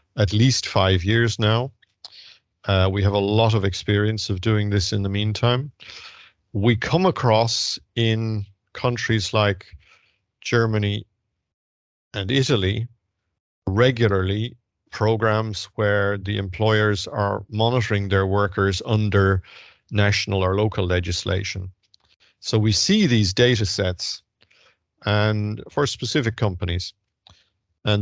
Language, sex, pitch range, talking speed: English, male, 100-115 Hz, 110 wpm